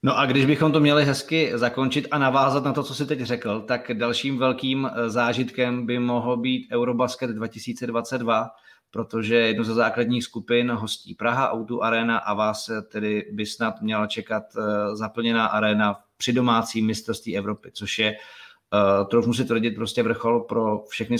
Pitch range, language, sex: 110-125 Hz, Czech, male